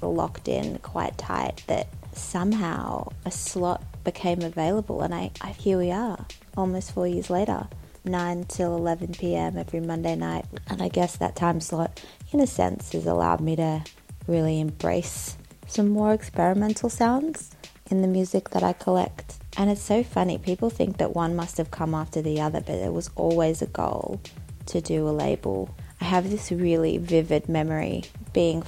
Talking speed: 175 wpm